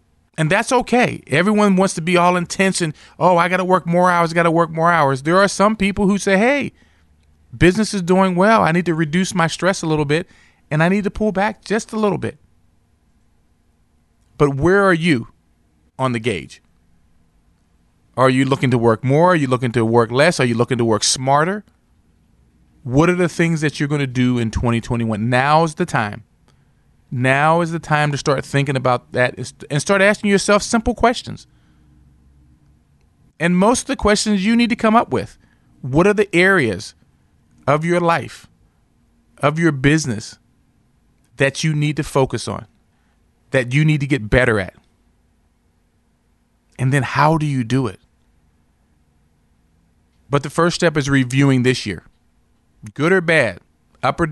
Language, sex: English, male